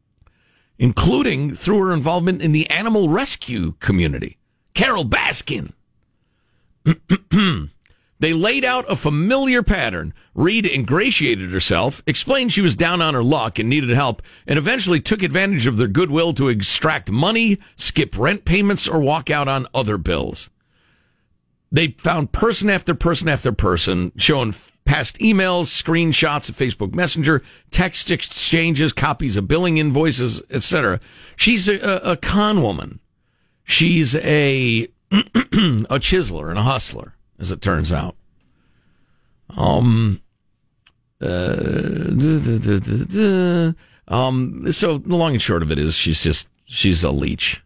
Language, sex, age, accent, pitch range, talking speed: English, male, 50-69, American, 105-175 Hz, 130 wpm